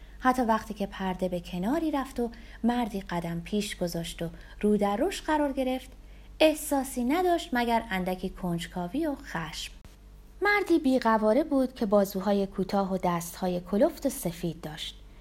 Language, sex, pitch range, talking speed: Persian, female, 180-280 Hz, 145 wpm